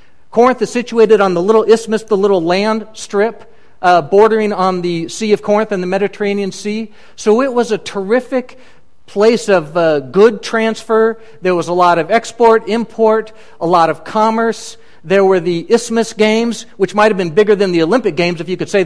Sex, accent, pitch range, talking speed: male, American, 185-220 Hz, 195 wpm